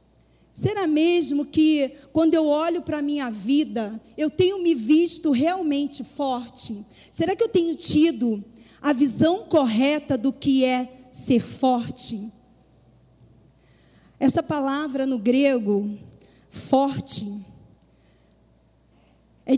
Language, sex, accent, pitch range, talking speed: Portuguese, female, Brazilian, 240-305 Hz, 105 wpm